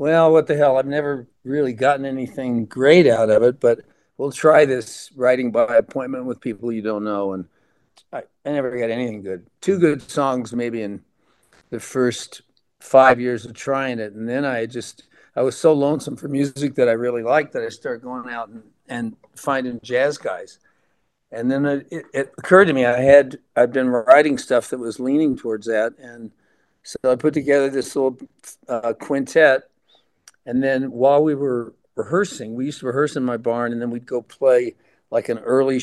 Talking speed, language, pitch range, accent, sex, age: 200 wpm, English, 120-145 Hz, American, male, 50-69